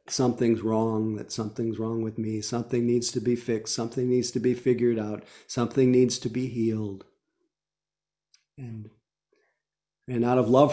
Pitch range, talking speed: 115-130 Hz, 155 wpm